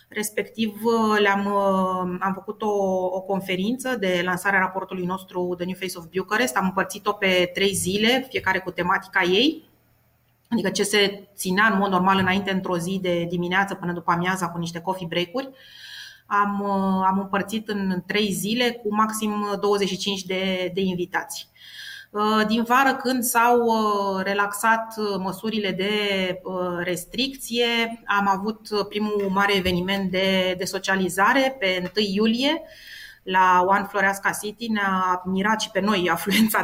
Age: 30-49